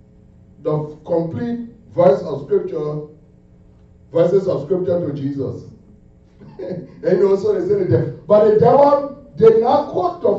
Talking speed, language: 135 wpm, English